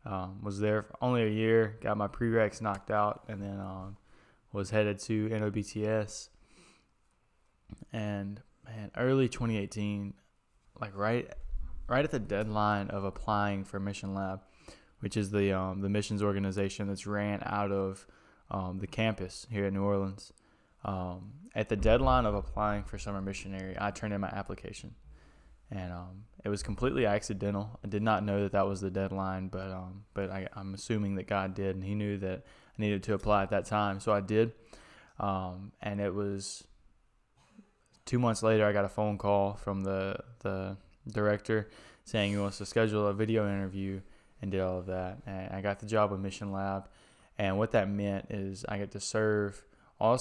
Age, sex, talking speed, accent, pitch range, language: 10-29, male, 180 wpm, American, 95-105 Hz, English